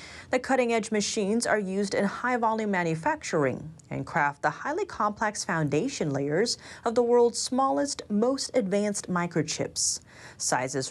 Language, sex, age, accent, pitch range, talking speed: English, female, 30-49, American, 150-235 Hz, 125 wpm